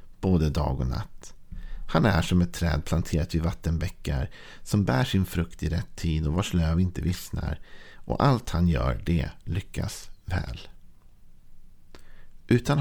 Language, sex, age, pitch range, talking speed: Swedish, male, 50-69, 85-100 Hz, 150 wpm